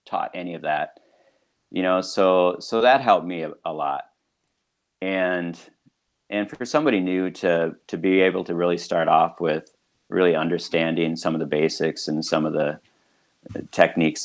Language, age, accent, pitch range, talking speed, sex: English, 40-59, American, 80-95 Hz, 165 wpm, male